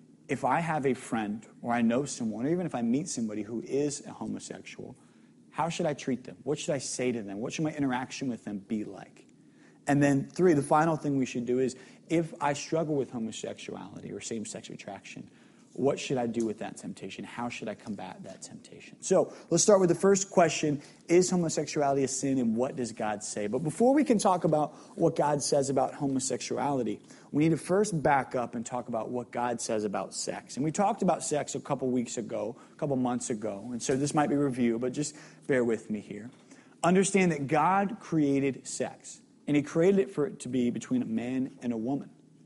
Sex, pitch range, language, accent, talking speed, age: male, 120-160 Hz, English, American, 220 wpm, 30-49